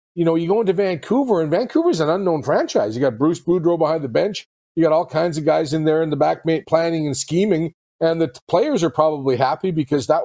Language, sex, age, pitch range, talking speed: English, male, 40-59, 145-180 Hz, 240 wpm